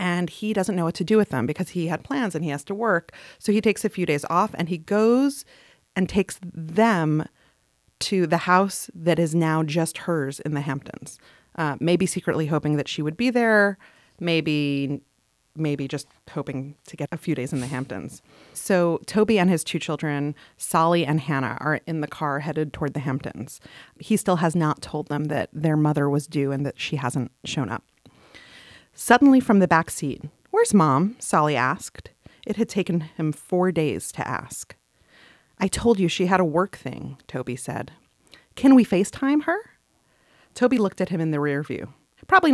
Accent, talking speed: American, 195 wpm